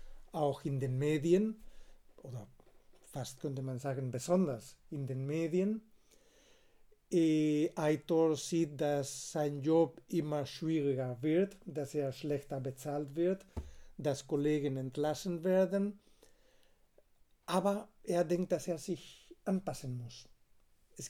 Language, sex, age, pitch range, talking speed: German, male, 60-79, 135-170 Hz, 110 wpm